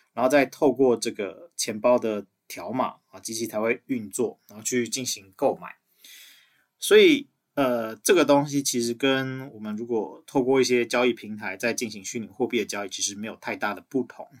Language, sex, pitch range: Chinese, male, 110-130 Hz